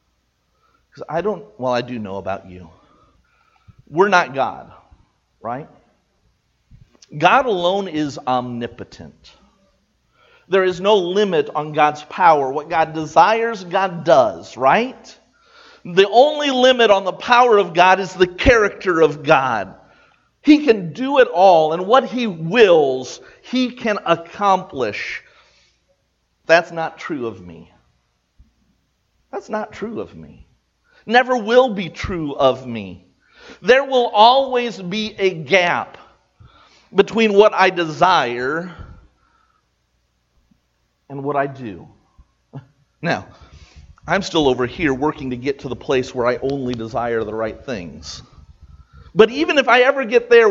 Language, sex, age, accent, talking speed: English, male, 50-69, American, 130 wpm